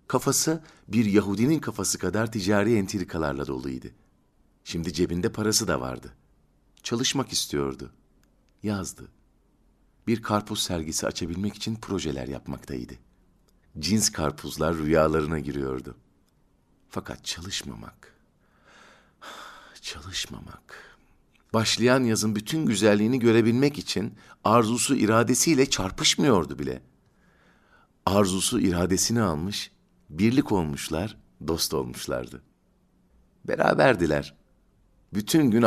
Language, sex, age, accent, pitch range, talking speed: Turkish, male, 50-69, native, 75-110 Hz, 85 wpm